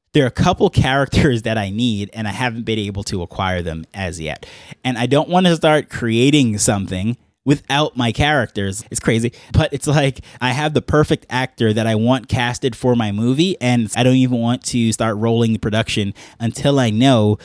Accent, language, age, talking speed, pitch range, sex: American, English, 20-39, 205 wpm, 110-135 Hz, male